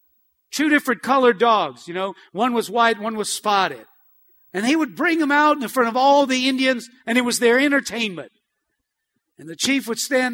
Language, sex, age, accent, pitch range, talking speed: English, male, 50-69, American, 225-275 Hz, 195 wpm